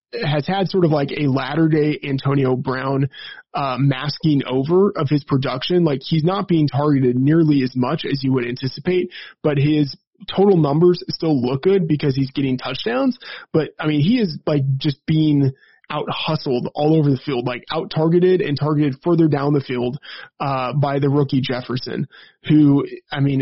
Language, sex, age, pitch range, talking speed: English, male, 20-39, 135-160 Hz, 180 wpm